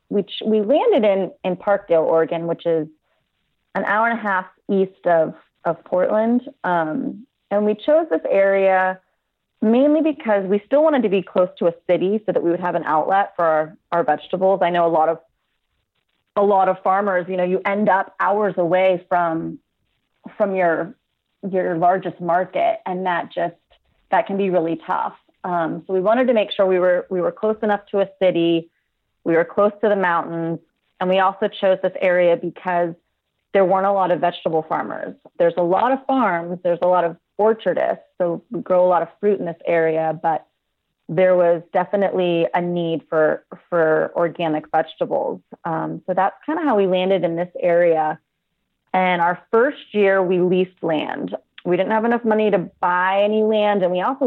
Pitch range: 170-200 Hz